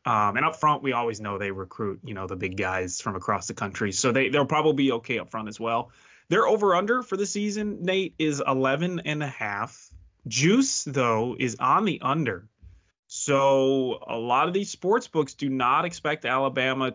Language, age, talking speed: English, 20-39, 200 wpm